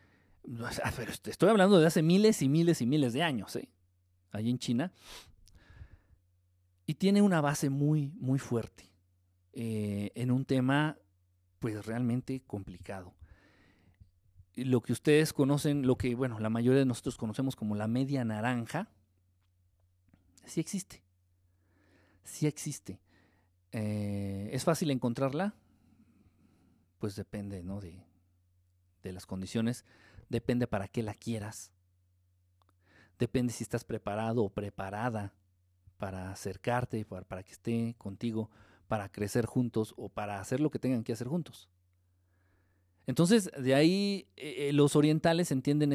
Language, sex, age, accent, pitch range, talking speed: Spanish, male, 50-69, Mexican, 95-135 Hz, 125 wpm